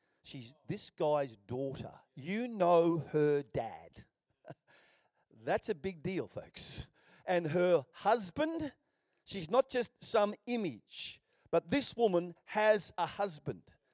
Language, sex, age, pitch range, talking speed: English, male, 50-69, 165-235 Hz, 115 wpm